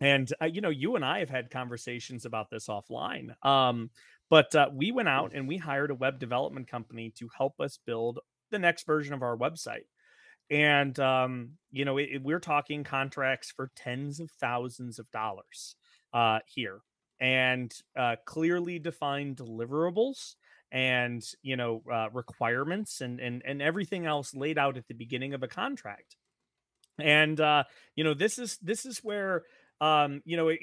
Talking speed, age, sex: 170 wpm, 30-49, male